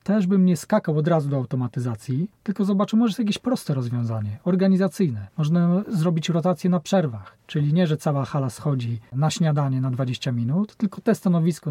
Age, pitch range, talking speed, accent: 40-59, 130-170 Hz, 180 wpm, native